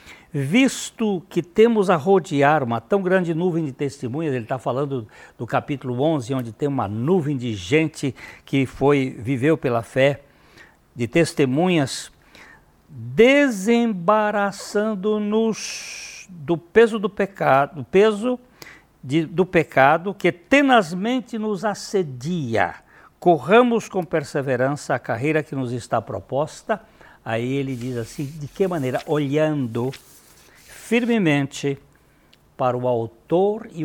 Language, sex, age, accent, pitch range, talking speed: Portuguese, male, 60-79, Brazilian, 130-180 Hz, 110 wpm